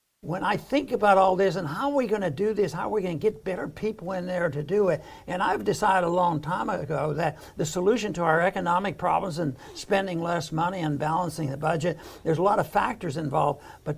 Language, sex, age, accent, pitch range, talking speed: English, male, 60-79, American, 160-200 Hz, 240 wpm